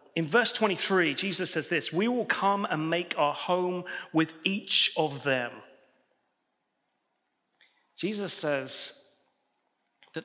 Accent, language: British, English